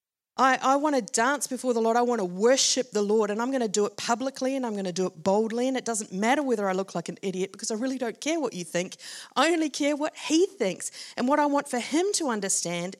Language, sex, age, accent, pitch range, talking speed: English, female, 40-59, Australian, 185-250 Hz, 275 wpm